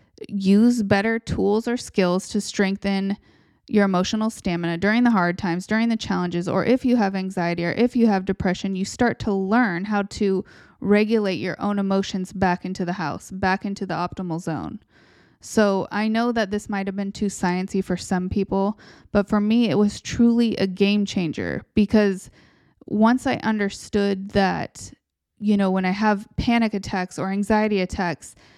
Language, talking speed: English, 175 wpm